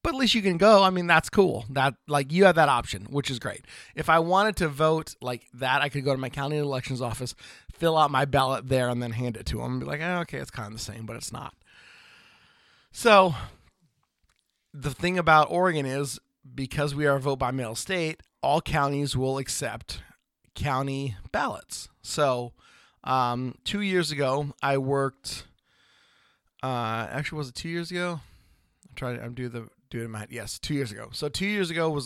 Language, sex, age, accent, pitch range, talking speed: English, male, 30-49, American, 120-150 Hz, 200 wpm